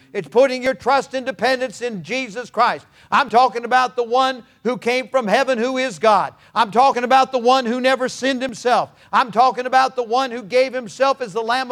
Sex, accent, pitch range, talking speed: male, American, 235-265 Hz, 210 wpm